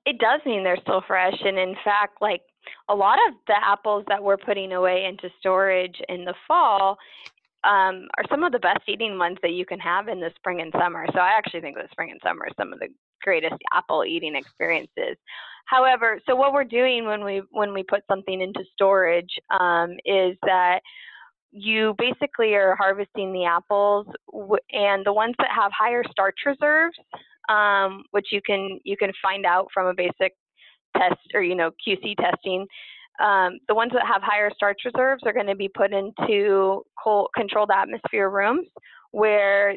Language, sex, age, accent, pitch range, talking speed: English, female, 20-39, American, 185-220 Hz, 185 wpm